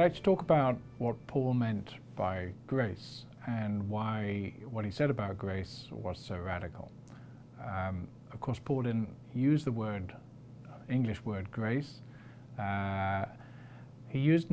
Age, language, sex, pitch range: 40-59, English, male, 105-130 Hz